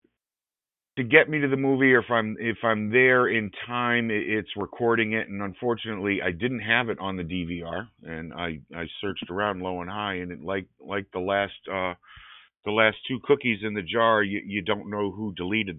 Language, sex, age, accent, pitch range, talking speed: English, male, 50-69, American, 90-110 Hz, 205 wpm